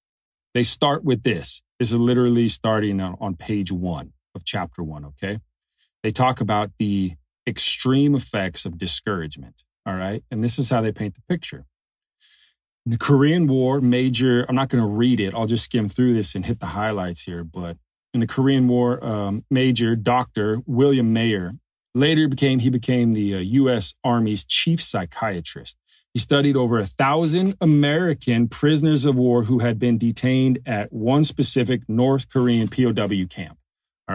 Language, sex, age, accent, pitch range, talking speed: English, male, 30-49, American, 95-130 Hz, 170 wpm